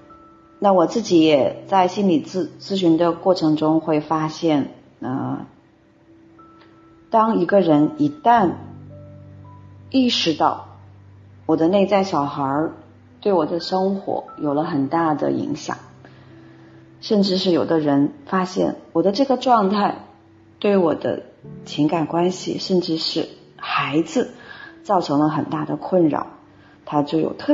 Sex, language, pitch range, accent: female, Chinese, 145-190 Hz, native